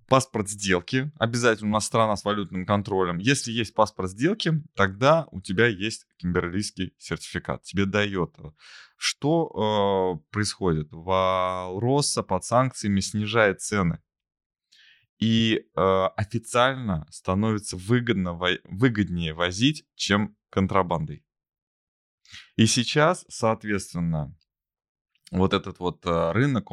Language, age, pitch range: Russian, 20-39, 90-115 Hz